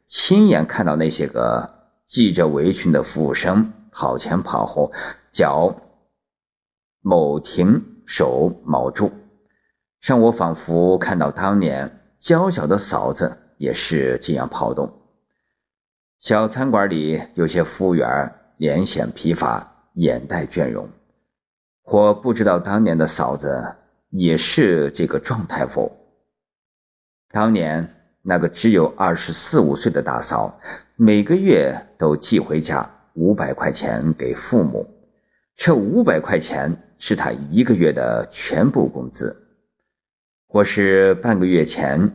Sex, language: male, Chinese